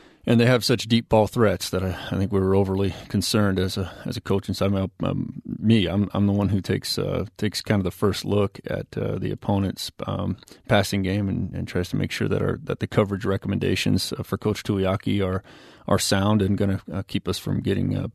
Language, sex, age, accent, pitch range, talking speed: English, male, 30-49, American, 95-105 Hz, 240 wpm